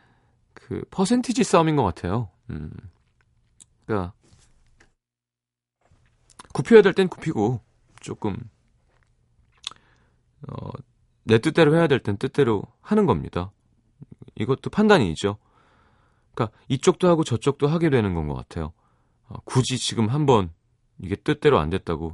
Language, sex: Korean, male